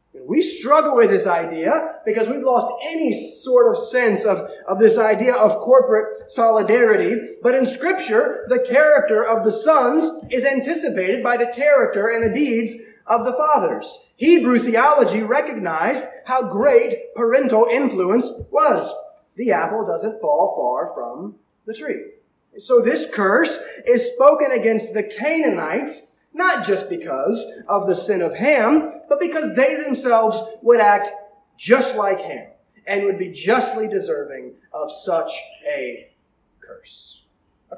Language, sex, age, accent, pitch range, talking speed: English, male, 30-49, American, 230-335 Hz, 140 wpm